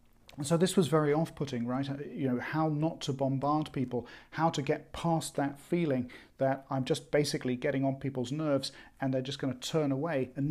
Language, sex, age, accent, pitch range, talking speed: English, male, 40-59, British, 140-170 Hz, 200 wpm